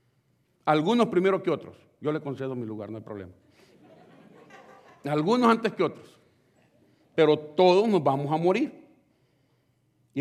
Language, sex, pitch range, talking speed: Spanish, male, 125-170 Hz, 135 wpm